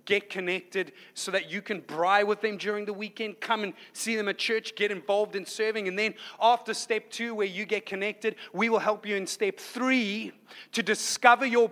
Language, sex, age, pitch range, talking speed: English, male, 30-49, 180-225 Hz, 210 wpm